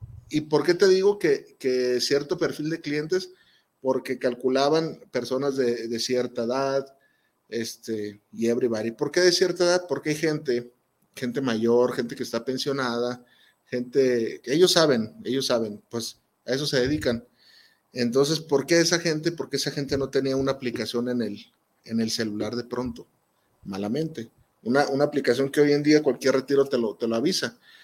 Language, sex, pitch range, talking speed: Spanish, male, 125-160 Hz, 170 wpm